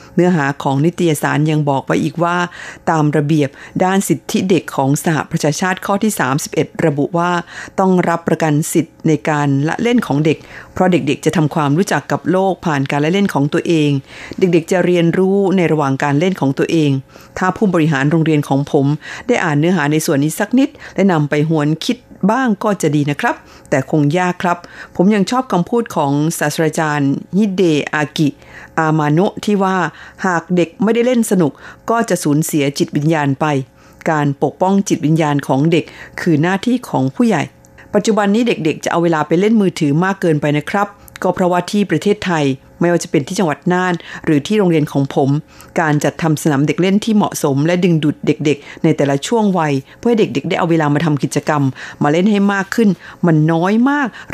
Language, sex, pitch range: Thai, female, 150-190 Hz